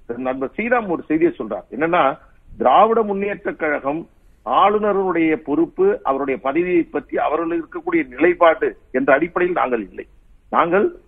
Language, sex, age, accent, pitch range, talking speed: Tamil, male, 50-69, native, 170-240 Hz, 120 wpm